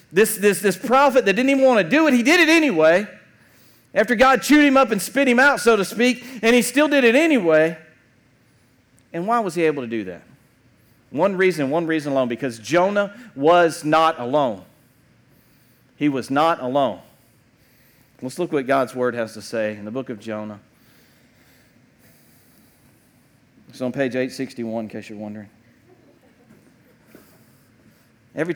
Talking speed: 160 wpm